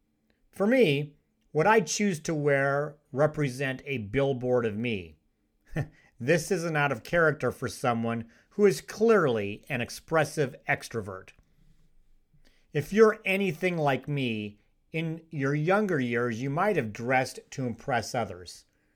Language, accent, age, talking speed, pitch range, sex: English, American, 40-59, 130 wpm, 120-155 Hz, male